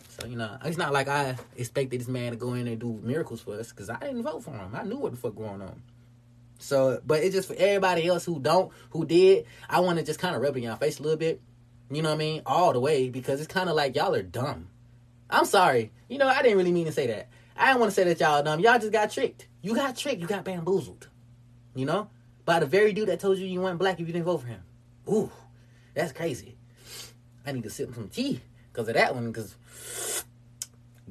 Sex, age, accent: male, 20-39, American